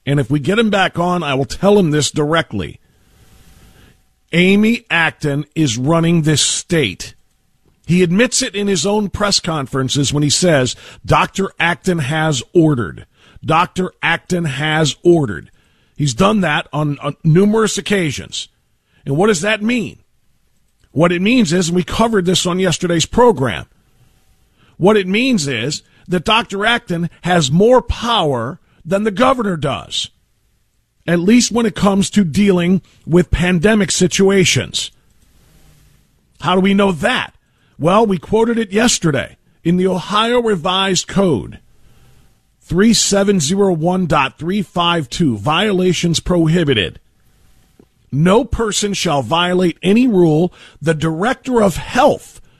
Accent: American